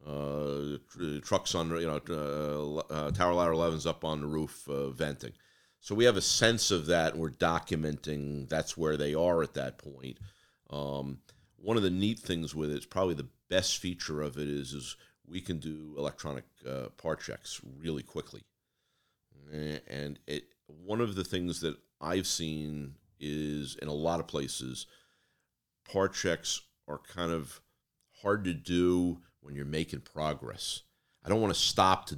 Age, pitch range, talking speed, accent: 50-69, 75-90 Hz, 170 wpm, American